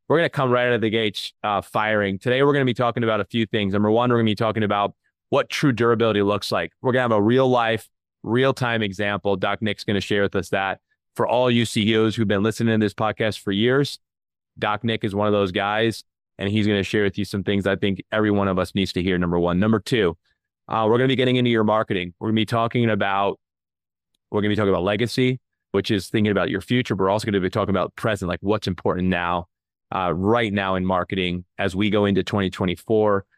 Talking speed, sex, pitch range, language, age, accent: 245 wpm, male, 95-110 Hz, English, 30-49, American